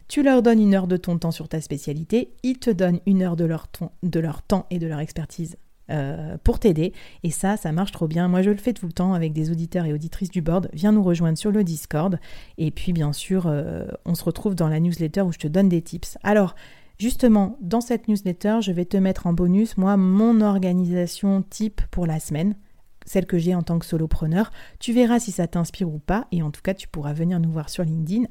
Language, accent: French, French